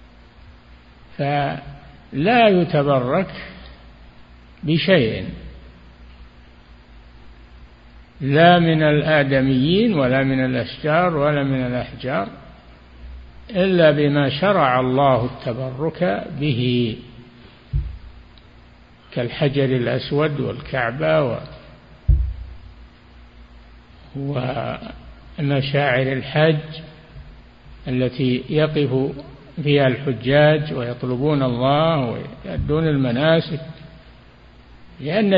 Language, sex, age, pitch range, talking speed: Arabic, male, 60-79, 120-155 Hz, 55 wpm